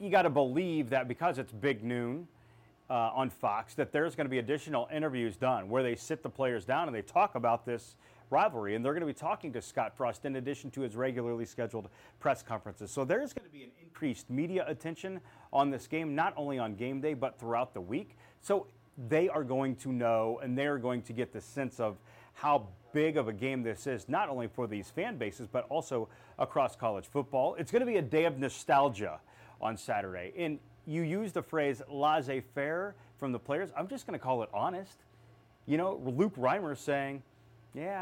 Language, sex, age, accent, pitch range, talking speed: English, male, 30-49, American, 120-160 Hz, 210 wpm